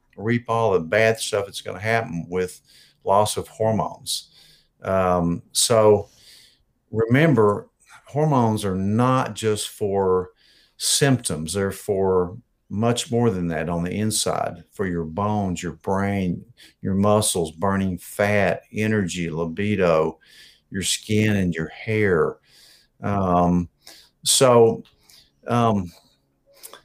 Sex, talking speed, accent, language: male, 110 wpm, American, English